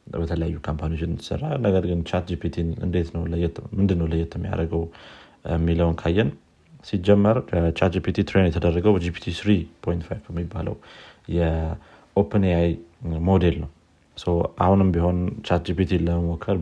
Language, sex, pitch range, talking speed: Amharic, male, 80-95 Hz, 110 wpm